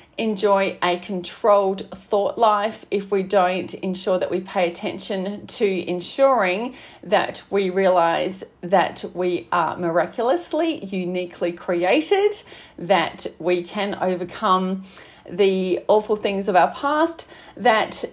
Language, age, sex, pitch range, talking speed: English, 30-49, female, 185-275 Hz, 115 wpm